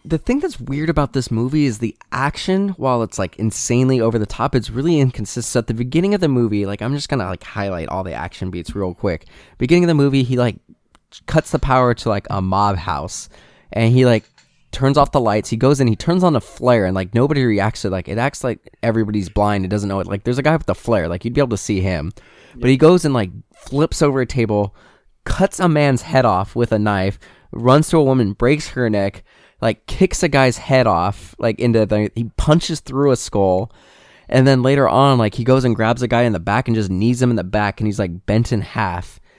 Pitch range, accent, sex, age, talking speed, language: 100-135 Hz, American, male, 20-39, 250 wpm, English